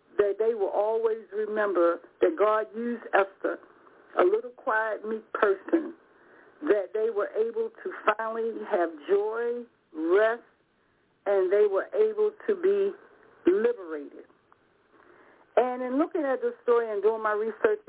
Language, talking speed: English, 135 wpm